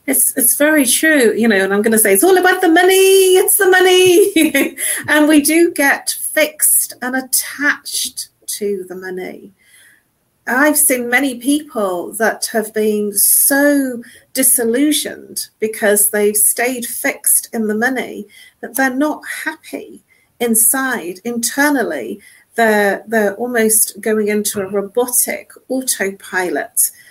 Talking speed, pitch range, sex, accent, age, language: 130 wpm, 215-280 Hz, female, British, 40-59, English